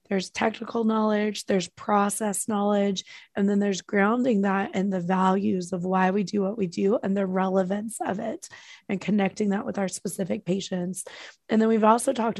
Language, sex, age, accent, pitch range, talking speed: English, female, 20-39, American, 190-225 Hz, 185 wpm